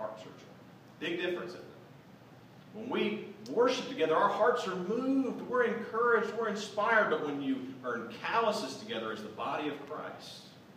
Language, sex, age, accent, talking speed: English, male, 40-59, American, 175 wpm